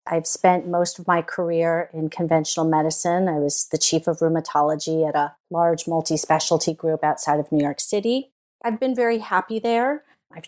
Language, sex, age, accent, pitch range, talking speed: English, female, 40-59, American, 170-210 Hz, 180 wpm